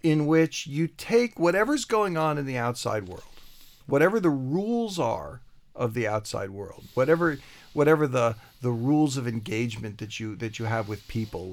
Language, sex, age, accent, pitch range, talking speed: English, male, 50-69, American, 110-145 Hz, 170 wpm